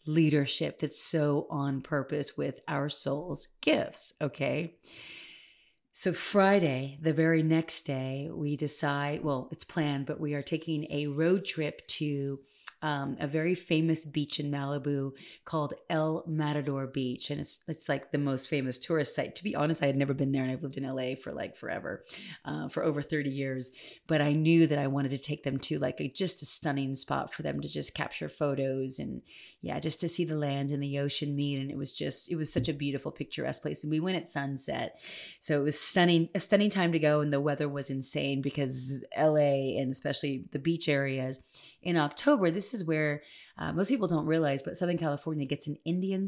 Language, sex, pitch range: English, female, 140-160 Hz